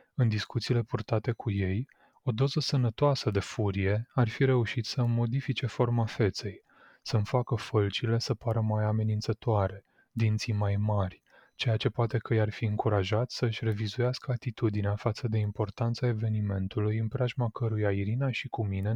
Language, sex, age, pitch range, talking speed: Romanian, male, 20-39, 105-120 Hz, 150 wpm